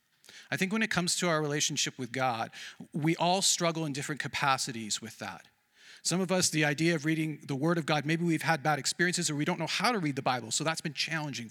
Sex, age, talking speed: male, 40-59, 245 wpm